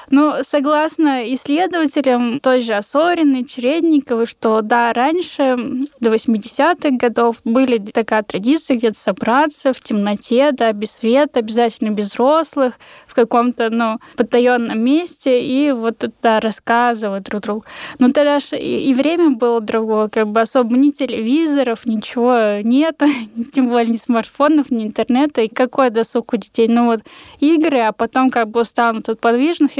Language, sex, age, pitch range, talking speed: Russian, female, 10-29, 230-275 Hz, 150 wpm